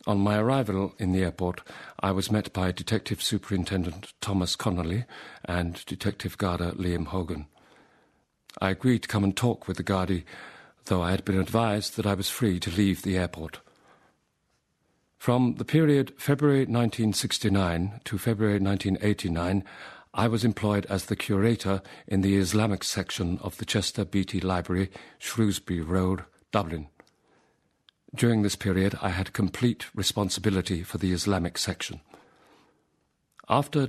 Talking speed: 140 wpm